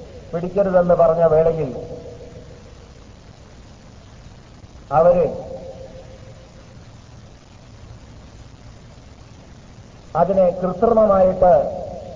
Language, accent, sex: Malayalam, native, male